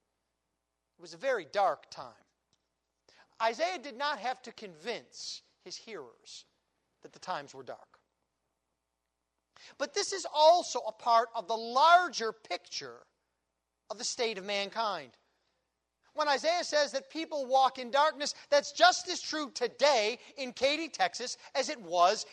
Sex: male